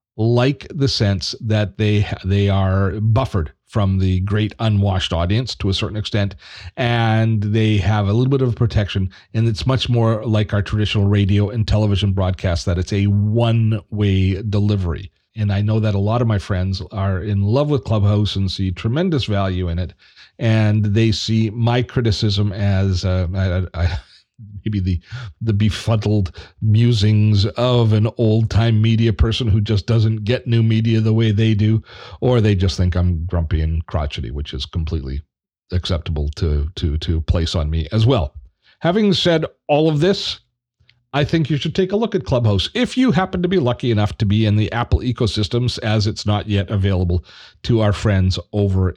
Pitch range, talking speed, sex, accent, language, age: 95-120 Hz, 180 wpm, male, American, English, 40-59